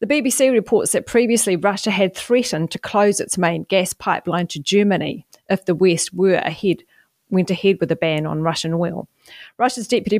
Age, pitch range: 40-59, 180-225 Hz